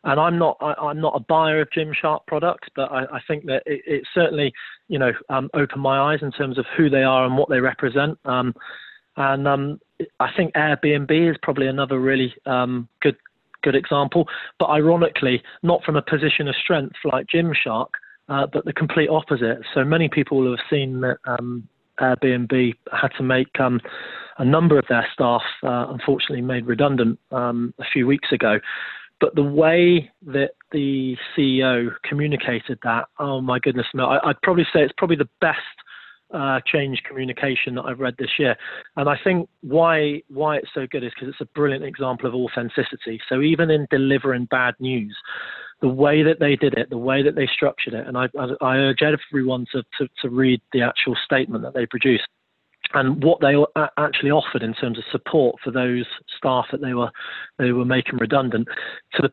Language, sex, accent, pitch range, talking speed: English, male, British, 125-145 Hz, 190 wpm